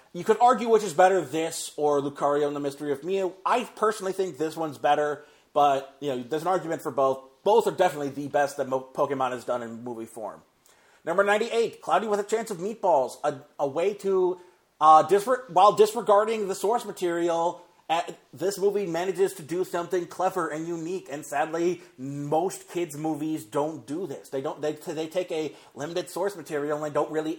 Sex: male